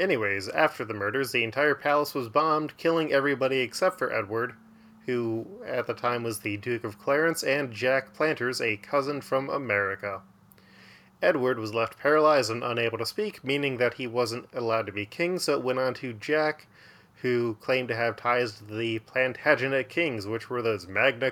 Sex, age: male, 20-39